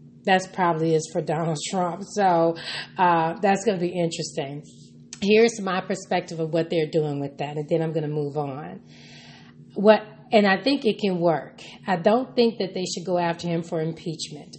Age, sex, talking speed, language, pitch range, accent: 30-49, female, 195 wpm, English, 155-185 Hz, American